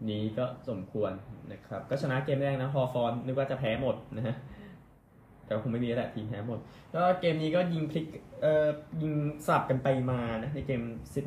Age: 10-29